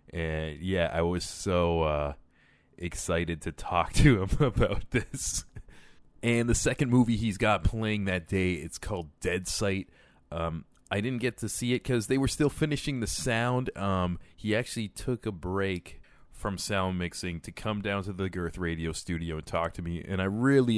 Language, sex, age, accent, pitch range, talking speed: English, male, 20-39, American, 85-110 Hz, 185 wpm